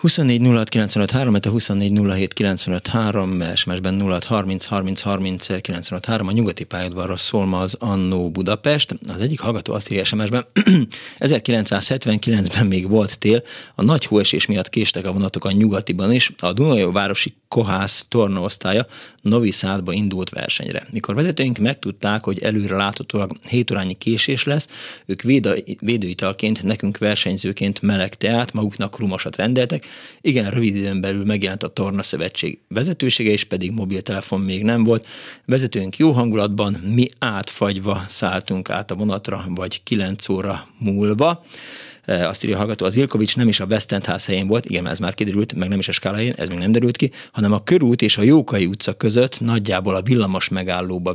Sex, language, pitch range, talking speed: male, Hungarian, 95-115 Hz, 150 wpm